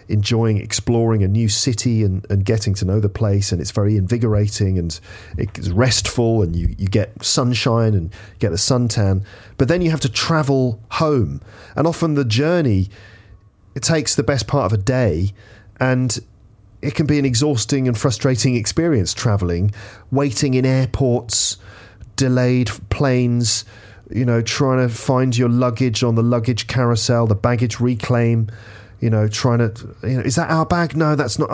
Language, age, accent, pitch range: English, 40-59, British, 105-140 Hz